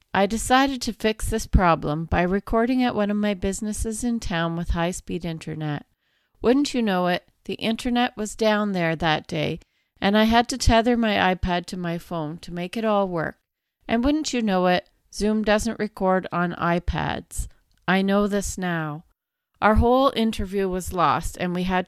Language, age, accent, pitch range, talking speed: English, 40-59, American, 175-225 Hz, 180 wpm